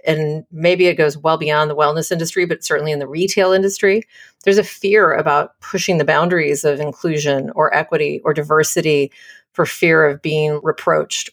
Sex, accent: female, American